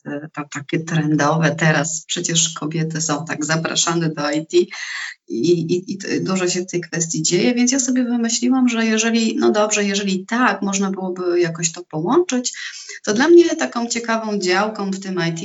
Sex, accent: female, native